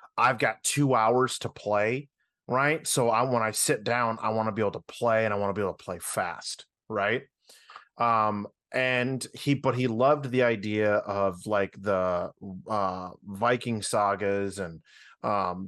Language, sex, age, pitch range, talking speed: English, male, 30-49, 100-125 Hz, 175 wpm